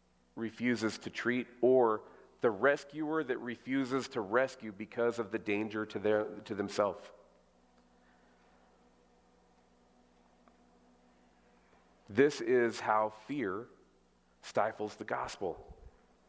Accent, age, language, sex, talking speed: American, 40-59, English, male, 90 wpm